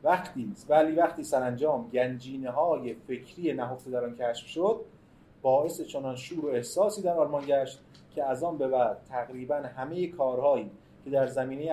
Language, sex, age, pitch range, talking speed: Persian, male, 30-49, 130-175 Hz, 160 wpm